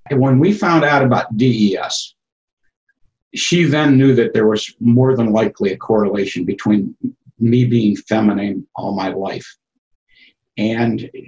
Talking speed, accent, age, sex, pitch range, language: 140 wpm, American, 60-79, male, 110-140 Hz, English